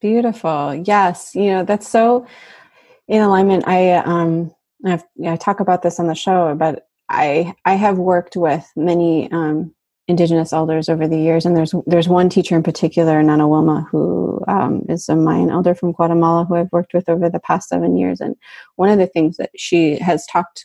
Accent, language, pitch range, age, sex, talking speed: American, English, 155-180 Hz, 30-49, female, 200 wpm